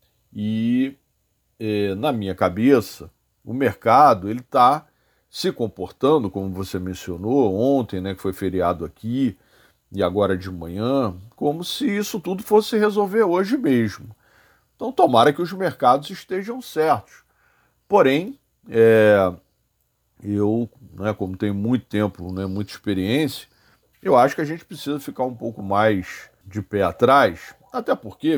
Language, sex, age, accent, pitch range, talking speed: Portuguese, male, 40-59, Brazilian, 100-165 Hz, 130 wpm